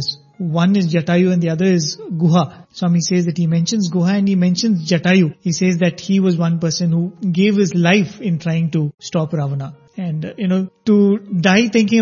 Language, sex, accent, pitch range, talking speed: English, male, Indian, 175-205 Hz, 200 wpm